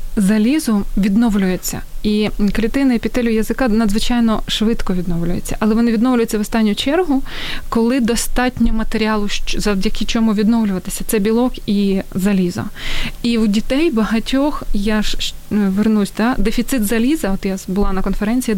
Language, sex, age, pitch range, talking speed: Ukrainian, female, 20-39, 205-240 Hz, 135 wpm